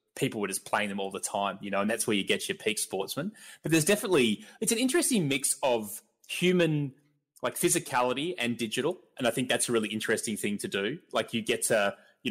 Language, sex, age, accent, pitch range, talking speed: English, male, 20-39, Australian, 115-155 Hz, 225 wpm